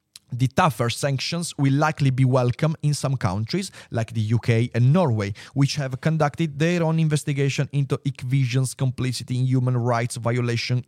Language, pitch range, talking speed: Italian, 120-150 Hz, 155 wpm